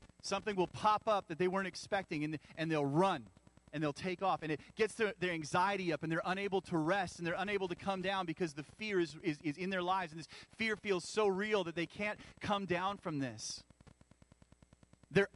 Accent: American